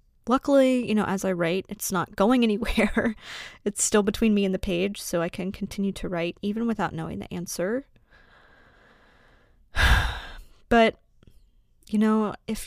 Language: English